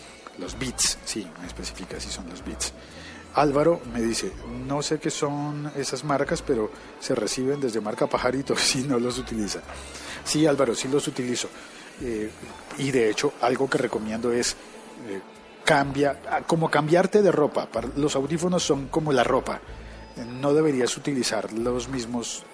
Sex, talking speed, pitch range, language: male, 155 wpm, 110-150 Hz, Spanish